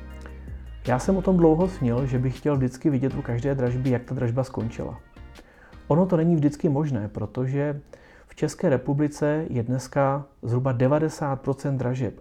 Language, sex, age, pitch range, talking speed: Czech, male, 40-59, 125-155 Hz, 155 wpm